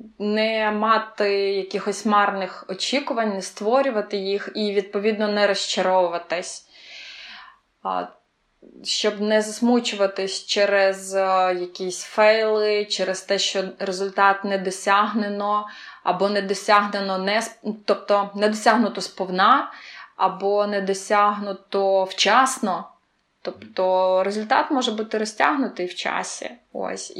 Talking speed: 95 wpm